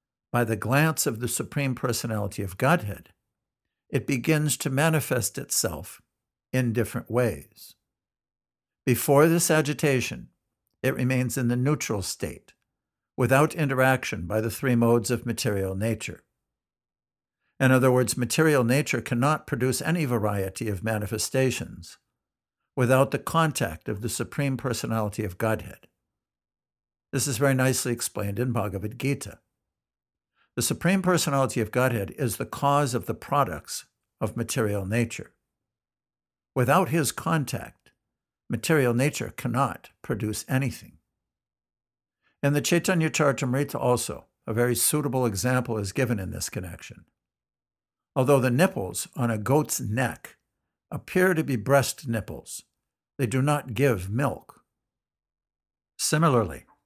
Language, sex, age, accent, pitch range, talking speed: English, male, 60-79, American, 115-140 Hz, 125 wpm